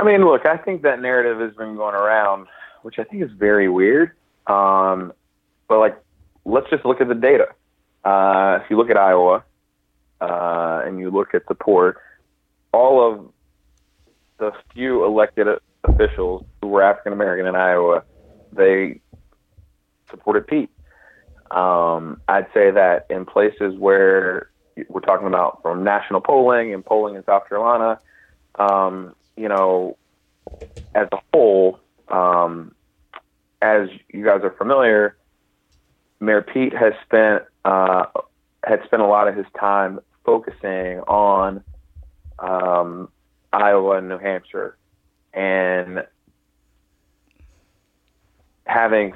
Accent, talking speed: American, 130 wpm